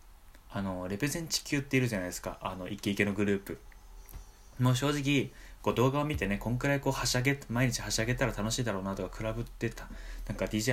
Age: 20-39